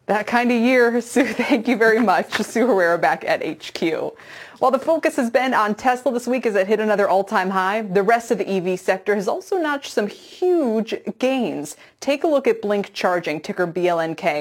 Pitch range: 175-235 Hz